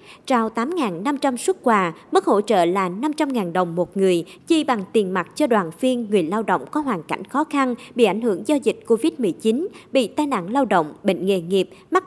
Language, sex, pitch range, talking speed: Vietnamese, male, 190-265 Hz, 210 wpm